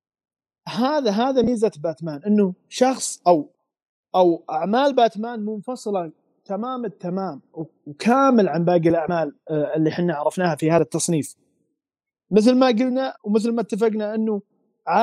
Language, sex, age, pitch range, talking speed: Arabic, male, 30-49, 170-230 Hz, 120 wpm